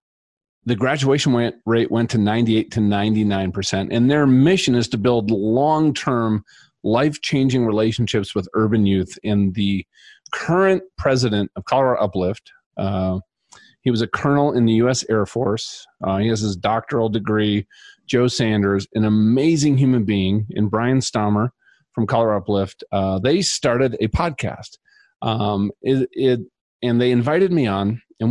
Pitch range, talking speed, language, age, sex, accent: 105-130 Hz, 150 wpm, English, 40-59, male, American